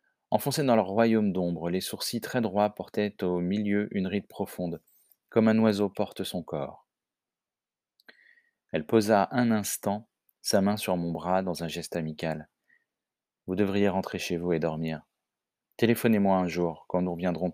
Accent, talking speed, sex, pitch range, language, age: French, 165 wpm, male, 85-110 Hz, French, 30-49